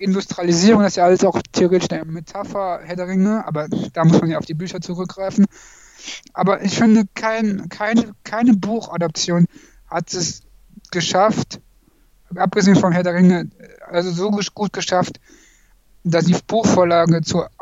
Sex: male